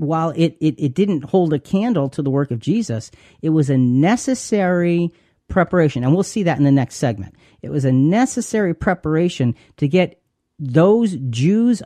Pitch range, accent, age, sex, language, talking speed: 130-185 Hz, American, 40-59, male, English, 175 wpm